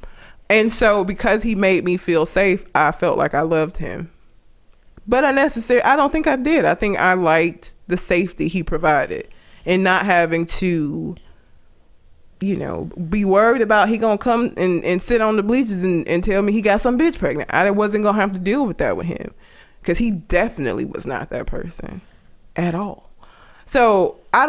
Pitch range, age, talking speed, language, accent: 165-215 Hz, 20-39, 190 wpm, English, American